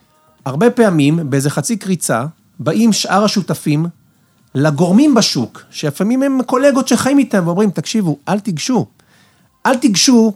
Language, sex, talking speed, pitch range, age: Hebrew, male, 120 wpm, 155-220 Hz, 40-59